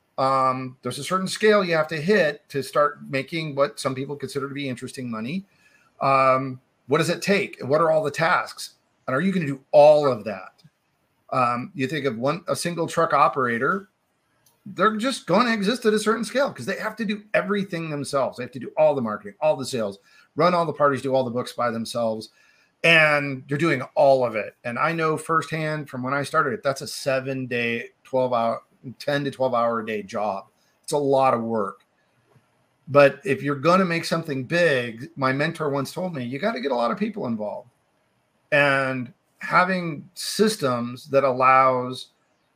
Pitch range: 130-160 Hz